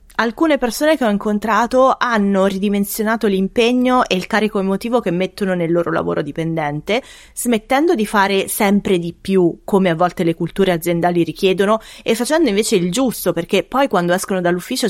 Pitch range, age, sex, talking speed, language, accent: 170-205 Hz, 20-39, female, 165 wpm, Italian, native